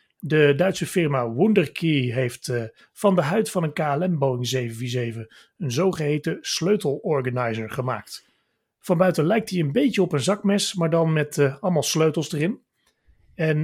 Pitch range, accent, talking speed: 130-180 Hz, Dutch, 155 wpm